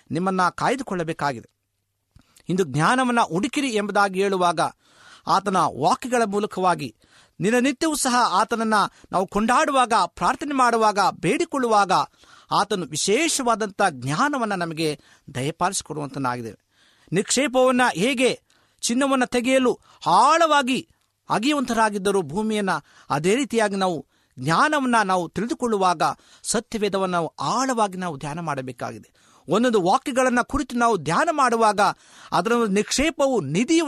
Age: 50-69